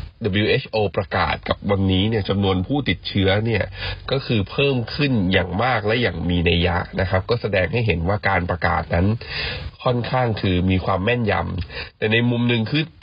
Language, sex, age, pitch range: Thai, male, 20-39, 90-110 Hz